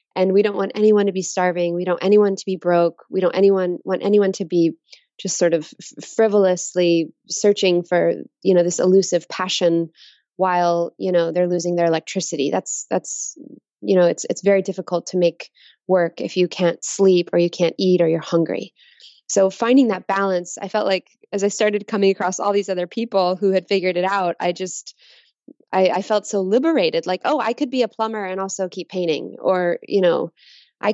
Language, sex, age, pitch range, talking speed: English, female, 20-39, 175-200 Hz, 205 wpm